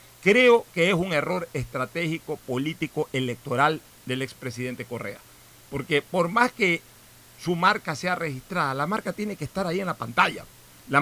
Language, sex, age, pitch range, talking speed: Spanish, male, 50-69, 145-195 Hz, 160 wpm